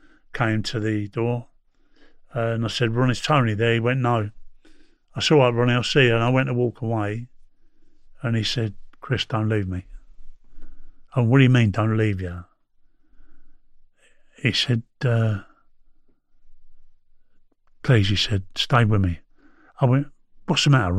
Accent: British